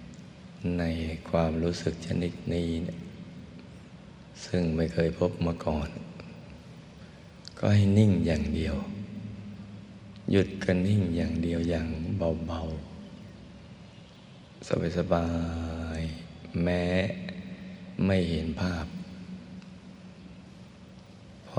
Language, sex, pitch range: Thai, male, 85-95 Hz